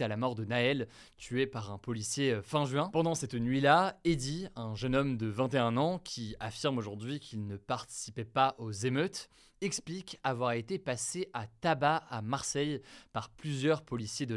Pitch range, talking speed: 115-150 Hz, 175 wpm